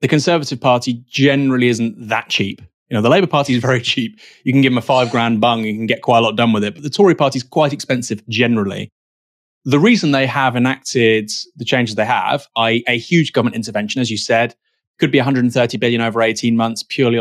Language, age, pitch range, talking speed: English, 20-39, 120-165 Hz, 225 wpm